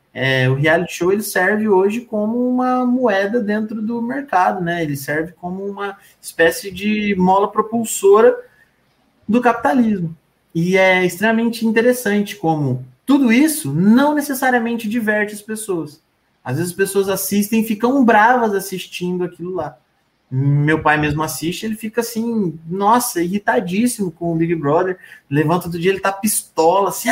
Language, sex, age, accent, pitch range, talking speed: Portuguese, male, 20-39, Brazilian, 175-230 Hz, 150 wpm